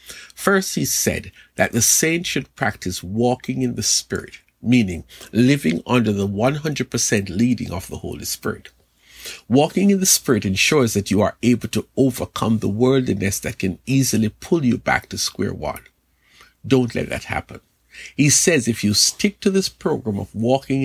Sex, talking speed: male, 165 wpm